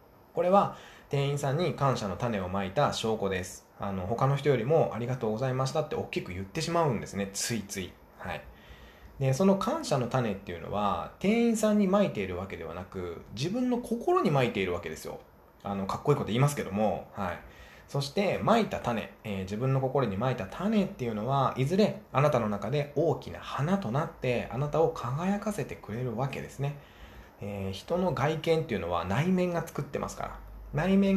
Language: Japanese